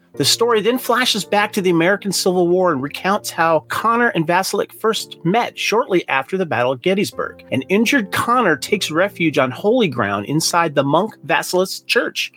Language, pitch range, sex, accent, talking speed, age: English, 155-215 Hz, male, American, 180 wpm, 40-59